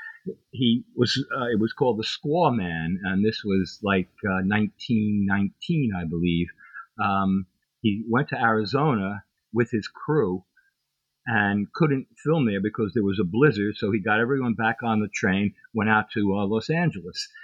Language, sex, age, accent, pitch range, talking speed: English, male, 50-69, American, 95-120 Hz, 165 wpm